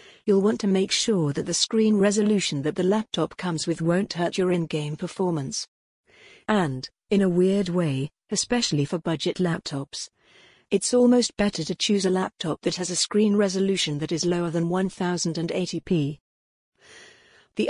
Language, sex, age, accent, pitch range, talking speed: English, female, 50-69, British, 170-205 Hz, 155 wpm